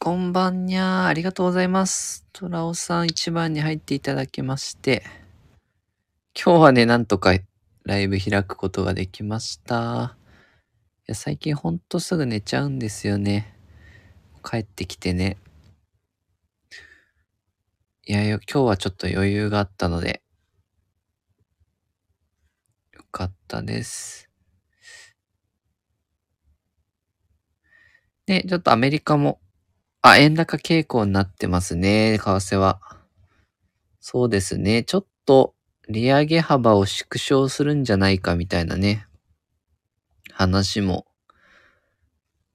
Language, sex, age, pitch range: Japanese, male, 20-39, 90-130 Hz